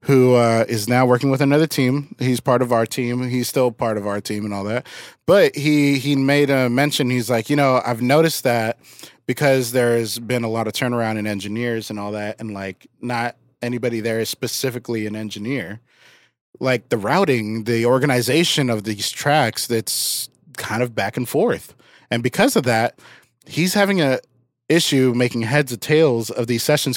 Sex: male